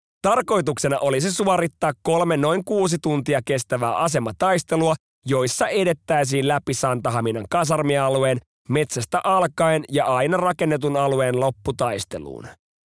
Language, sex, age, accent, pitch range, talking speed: Finnish, male, 30-49, native, 130-165 Hz, 105 wpm